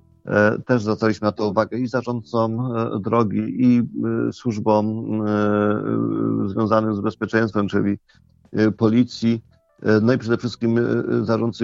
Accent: native